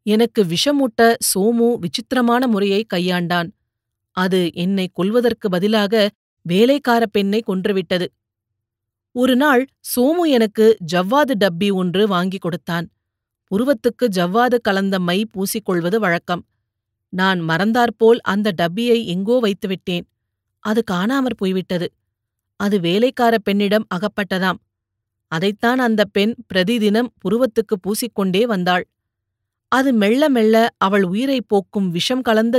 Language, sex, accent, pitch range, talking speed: Tamil, female, native, 175-225 Hz, 105 wpm